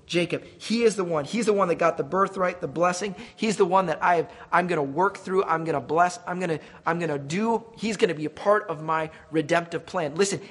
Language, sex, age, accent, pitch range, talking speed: English, male, 30-49, American, 145-185 Hz, 240 wpm